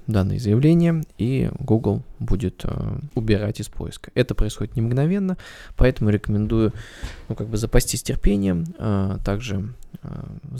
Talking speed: 130 wpm